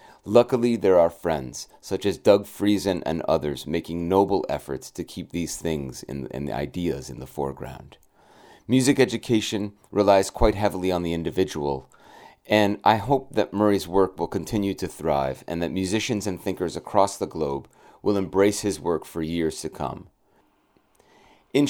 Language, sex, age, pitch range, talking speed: English, male, 30-49, 95-120 Hz, 160 wpm